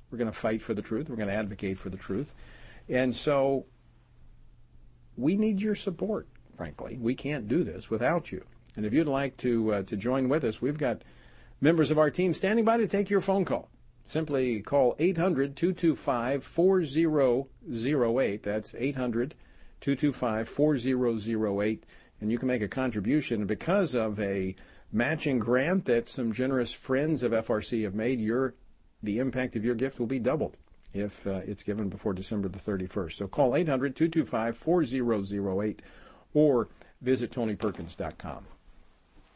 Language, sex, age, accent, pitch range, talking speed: English, male, 50-69, American, 105-140 Hz, 150 wpm